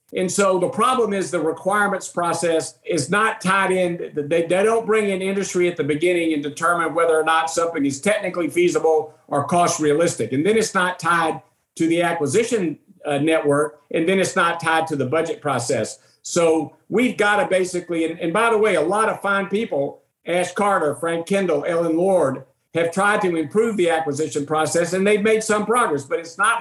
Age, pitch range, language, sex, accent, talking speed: 50-69, 160-200 Hz, English, male, American, 190 wpm